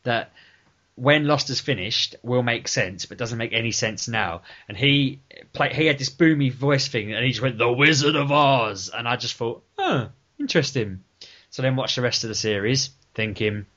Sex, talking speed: male, 200 wpm